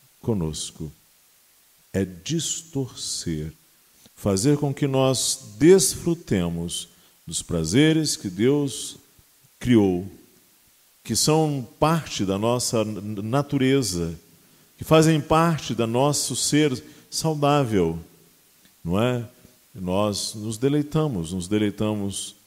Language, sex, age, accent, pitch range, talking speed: Portuguese, male, 50-69, Brazilian, 90-130 Hz, 90 wpm